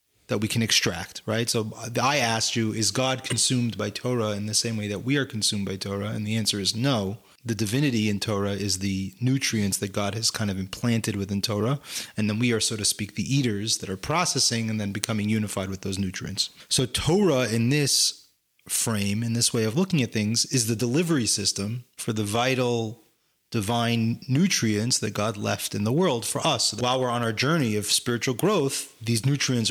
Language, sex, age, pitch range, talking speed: English, male, 30-49, 105-130 Hz, 205 wpm